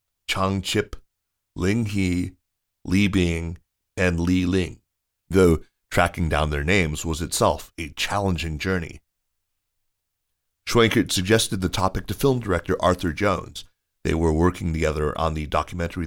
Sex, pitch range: male, 80-100 Hz